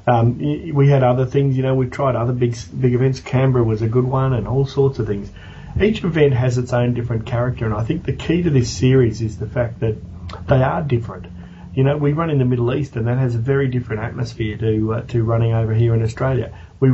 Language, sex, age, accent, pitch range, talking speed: English, male, 40-59, Australian, 110-130 Hz, 245 wpm